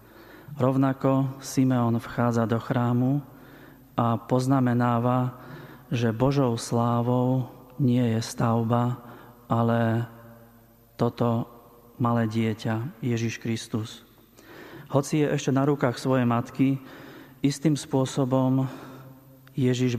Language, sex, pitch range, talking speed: Slovak, male, 115-130 Hz, 85 wpm